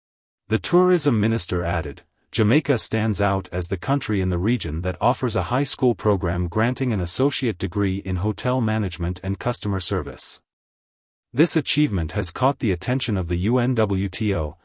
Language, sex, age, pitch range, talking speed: English, male, 30-49, 90-120 Hz, 155 wpm